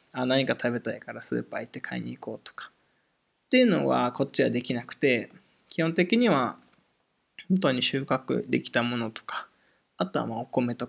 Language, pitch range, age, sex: Japanese, 125-185 Hz, 20-39, male